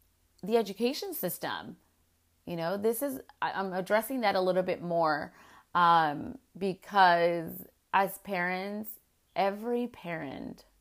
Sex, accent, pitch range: female, American, 165-195 Hz